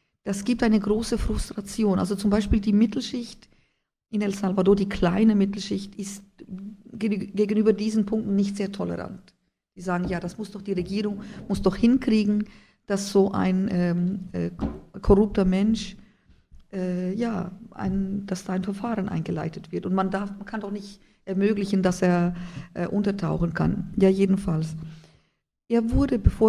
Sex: female